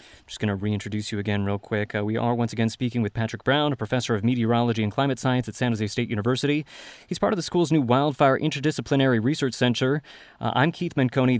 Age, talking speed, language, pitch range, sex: 30-49, 230 wpm, English, 115-135 Hz, male